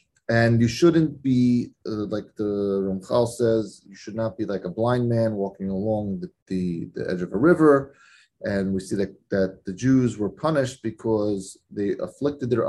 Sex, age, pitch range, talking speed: male, 30-49, 105-145 Hz, 180 wpm